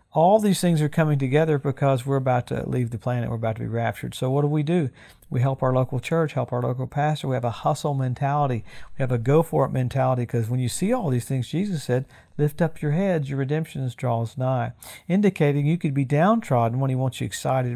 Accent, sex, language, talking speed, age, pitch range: American, male, English, 235 wpm, 50-69, 125-155 Hz